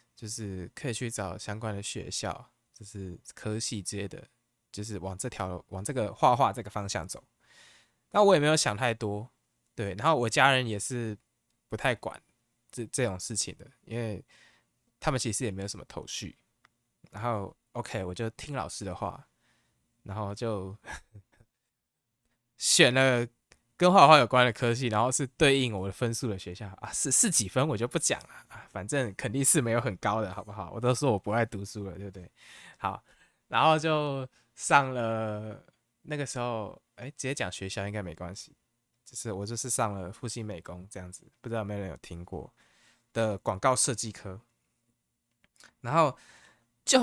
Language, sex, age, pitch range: Chinese, male, 20-39, 100-130 Hz